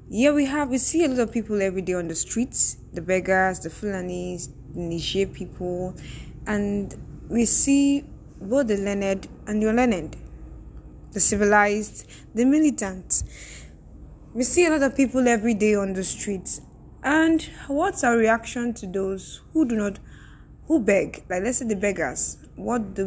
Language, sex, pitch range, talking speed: English, female, 185-250 Hz, 165 wpm